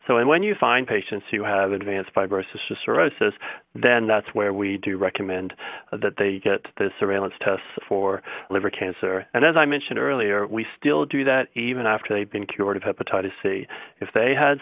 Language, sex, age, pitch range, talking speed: English, male, 30-49, 100-120 Hz, 190 wpm